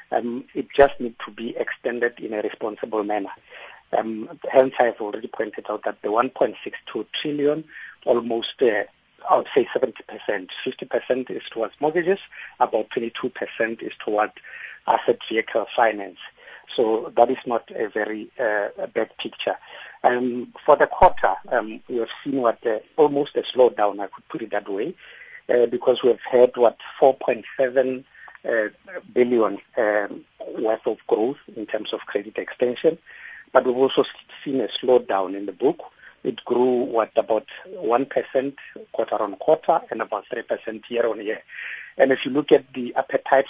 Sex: male